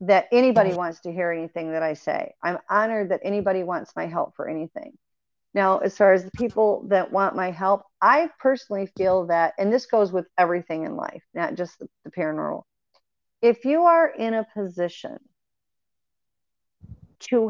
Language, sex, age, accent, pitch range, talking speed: English, female, 40-59, American, 185-240 Hz, 175 wpm